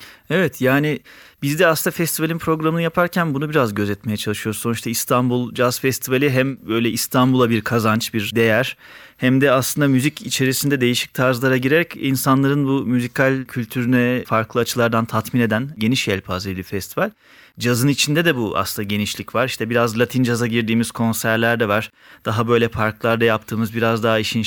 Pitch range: 110-135 Hz